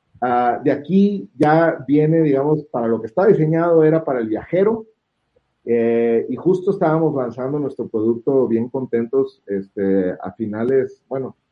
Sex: male